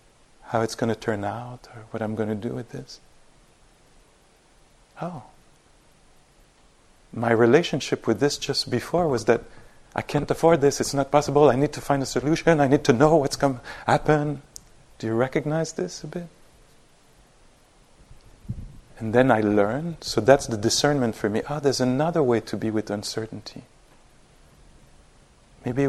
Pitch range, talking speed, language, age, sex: 115-145 Hz, 160 wpm, English, 40-59, male